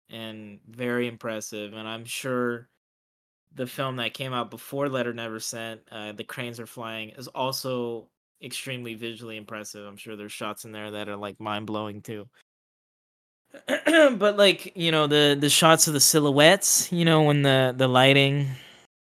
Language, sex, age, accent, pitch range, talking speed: English, male, 20-39, American, 115-145 Hz, 165 wpm